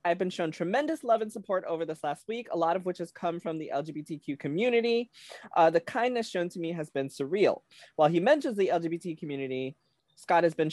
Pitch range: 145-190 Hz